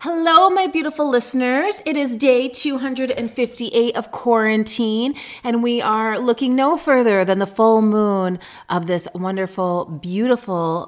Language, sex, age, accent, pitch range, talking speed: English, female, 30-49, American, 160-225 Hz, 130 wpm